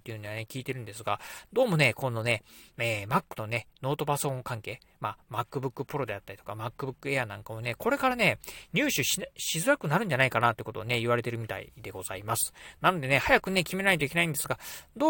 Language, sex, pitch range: Japanese, male, 120-155 Hz